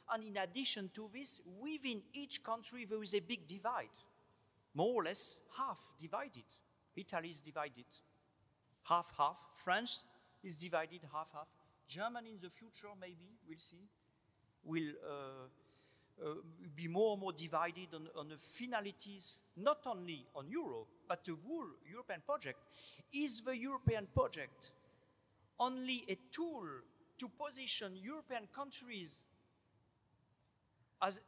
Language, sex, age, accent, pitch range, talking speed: Italian, male, 50-69, French, 155-225 Hz, 130 wpm